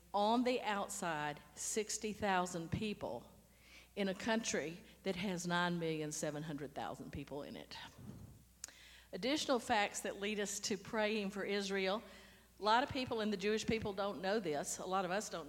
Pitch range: 180-230 Hz